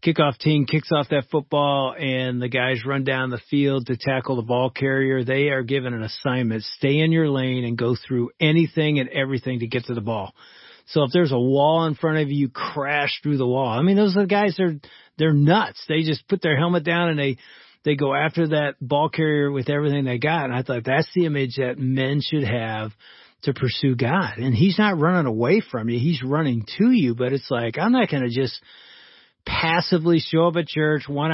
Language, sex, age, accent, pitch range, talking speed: English, male, 40-59, American, 130-170 Hz, 220 wpm